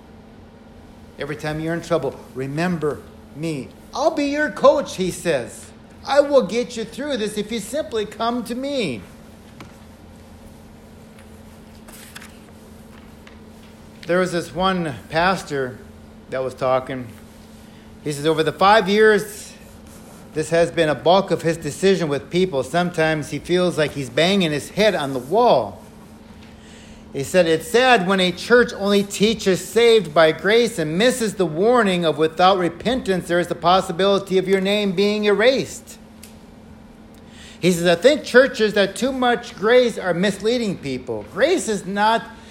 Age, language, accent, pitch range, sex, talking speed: 50-69, English, American, 155-220 Hz, male, 145 wpm